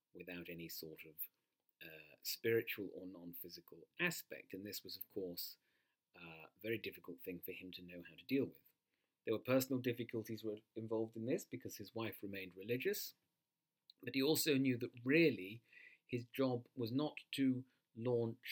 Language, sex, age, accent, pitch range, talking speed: English, male, 40-59, British, 100-130 Hz, 165 wpm